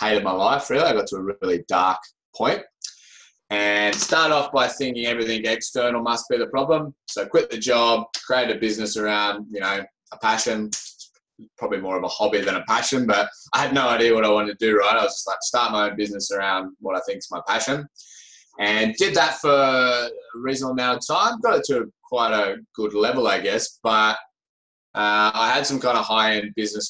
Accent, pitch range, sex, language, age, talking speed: Australian, 100-125 Hz, male, English, 20-39, 210 wpm